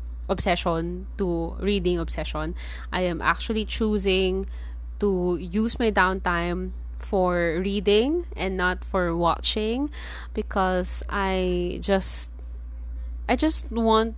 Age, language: 20-39, English